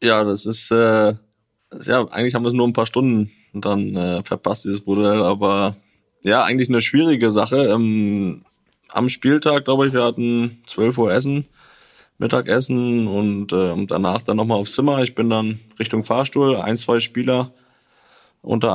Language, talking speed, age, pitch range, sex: German, 170 wpm, 20-39, 105-125 Hz, male